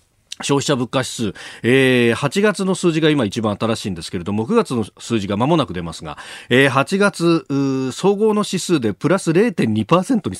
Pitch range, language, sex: 110-175 Hz, Japanese, male